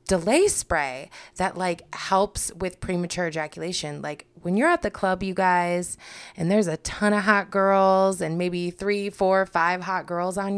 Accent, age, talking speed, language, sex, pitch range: American, 20-39, 175 wpm, English, female, 170-210 Hz